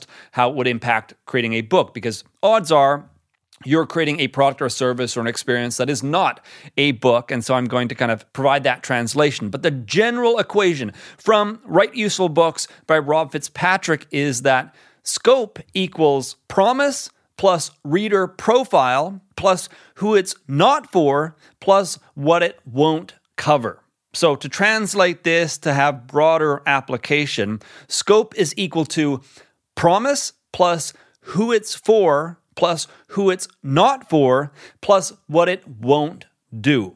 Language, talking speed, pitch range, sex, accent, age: English, 150 wpm, 130-180 Hz, male, American, 30-49